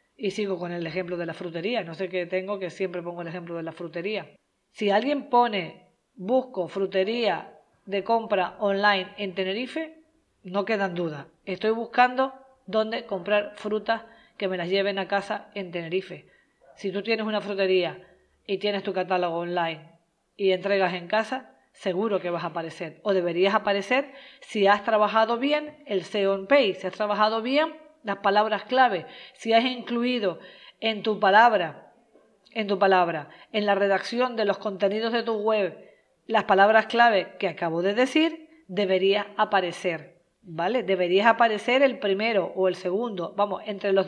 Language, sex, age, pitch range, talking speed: Spanish, female, 20-39, 190-230 Hz, 165 wpm